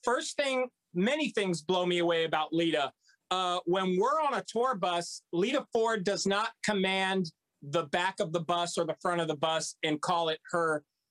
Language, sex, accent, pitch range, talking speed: English, male, American, 160-200 Hz, 195 wpm